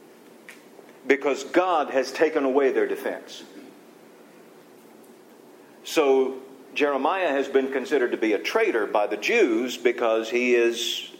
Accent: American